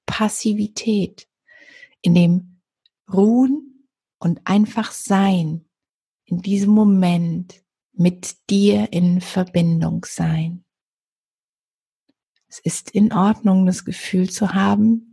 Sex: female